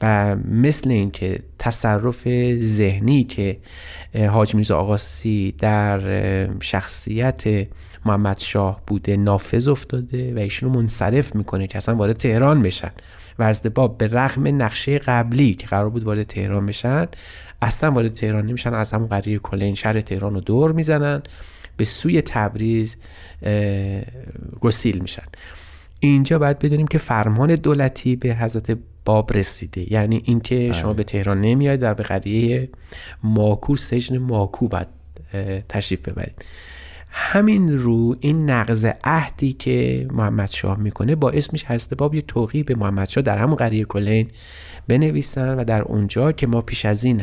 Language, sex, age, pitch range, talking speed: Persian, male, 30-49, 100-125 Hz, 150 wpm